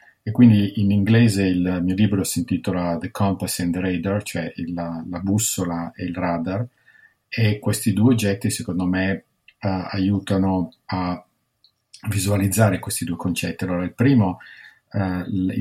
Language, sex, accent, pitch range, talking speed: Italian, male, native, 90-105 Hz, 150 wpm